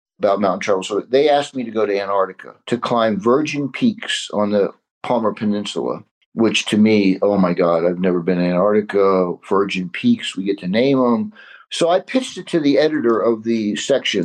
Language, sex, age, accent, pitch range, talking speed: English, male, 50-69, American, 100-145 Hz, 200 wpm